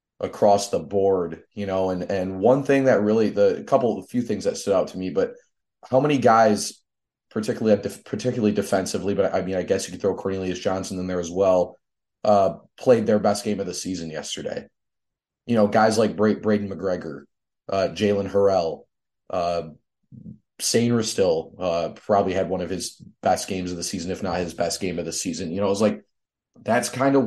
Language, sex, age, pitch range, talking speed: English, male, 30-49, 95-110 Hz, 200 wpm